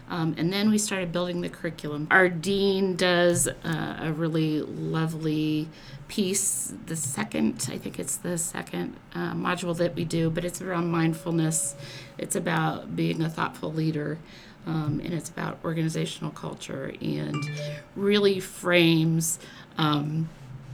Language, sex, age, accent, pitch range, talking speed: English, female, 40-59, American, 150-175 Hz, 140 wpm